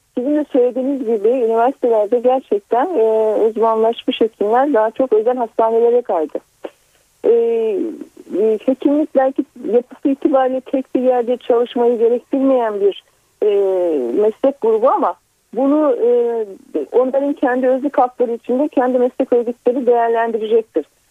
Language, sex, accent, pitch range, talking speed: Turkish, female, native, 235-290 Hz, 115 wpm